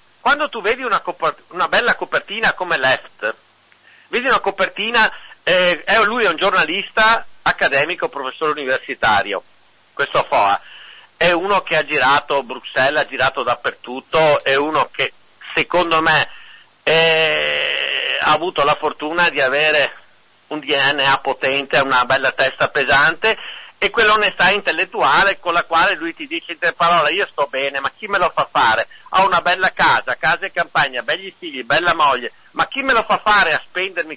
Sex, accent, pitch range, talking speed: male, native, 160-250 Hz, 160 wpm